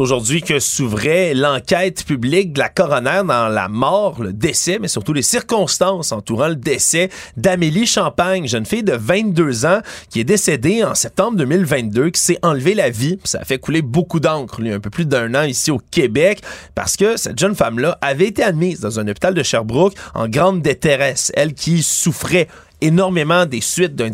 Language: French